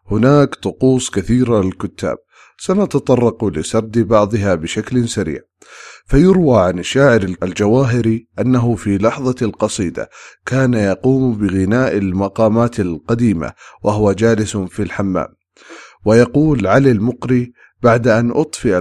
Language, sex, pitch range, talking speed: English, male, 100-130 Hz, 100 wpm